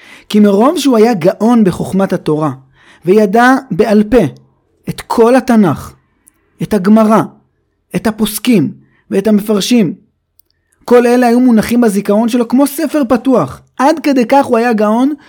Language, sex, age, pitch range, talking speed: Hebrew, male, 30-49, 145-225 Hz, 135 wpm